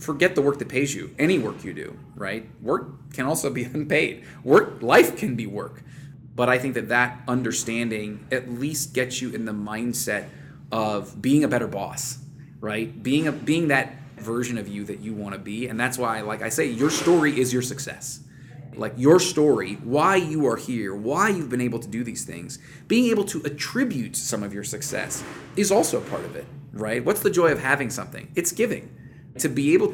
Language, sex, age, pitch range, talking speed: English, male, 20-39, 115-150 Hz, 210 wpm